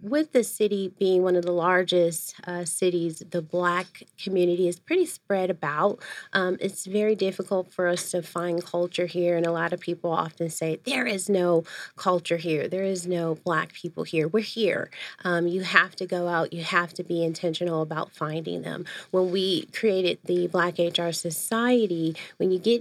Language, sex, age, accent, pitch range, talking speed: English, female, 30-49, American, 170-190 Hz, 185 wpm